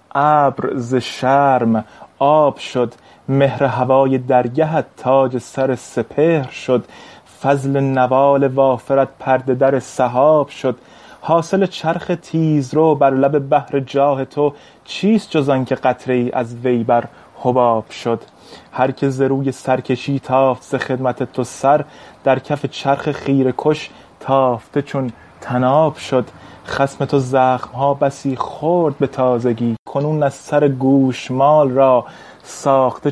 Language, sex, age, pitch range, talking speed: Persian, male, 30-49, 130-145 Hz, 120 wpm